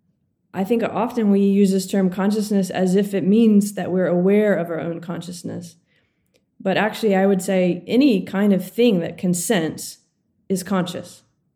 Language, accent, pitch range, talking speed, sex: English, American, 180-215 Hz, 170 wpm, female